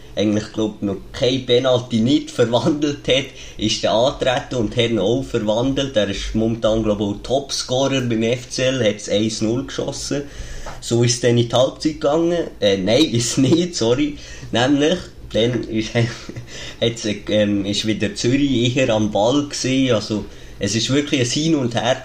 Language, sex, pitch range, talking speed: German, male, 110-135 Hz, 170 wpm